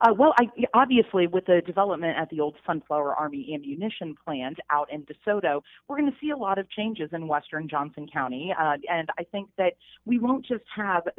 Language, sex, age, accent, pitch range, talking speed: English, female, 30-49, American, 155-195 Hz, 205 wpm